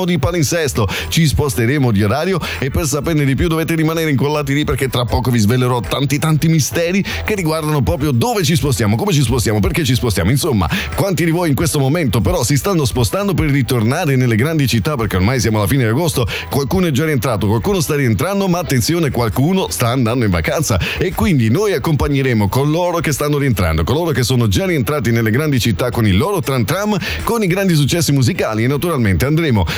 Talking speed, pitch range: 205 wpm, 110-150 Hz